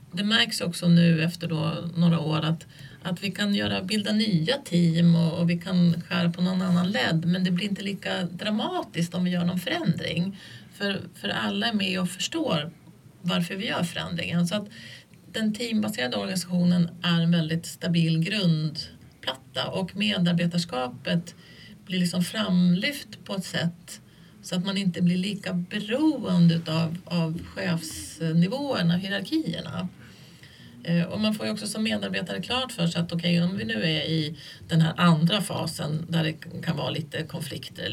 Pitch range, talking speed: 165-200 Hz, 165 wpm